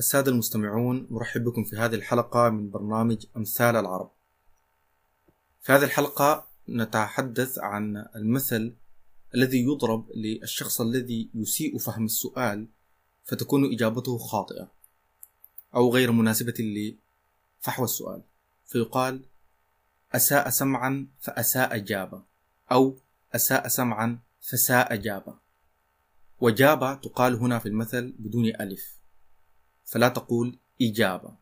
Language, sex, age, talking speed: Arabic, male, 30-49, 100 wpm